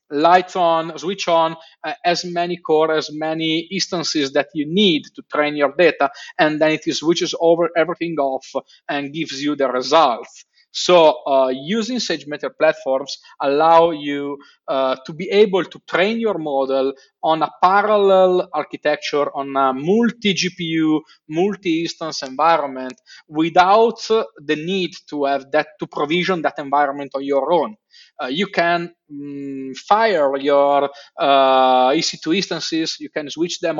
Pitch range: 140-175 Hz